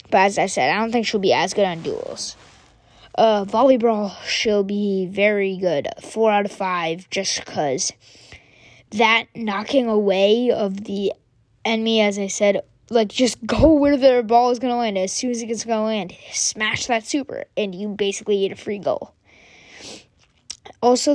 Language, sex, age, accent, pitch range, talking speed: English, female, 20-39, American, 200-245 Hz, 180 wpm